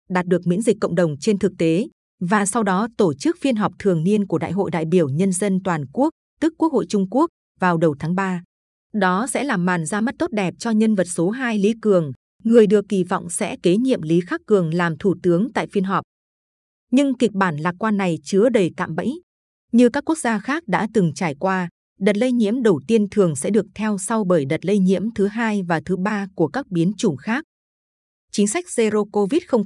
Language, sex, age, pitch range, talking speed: Vietnamese, female, 20-39, 180-225 Hz, 235 wpm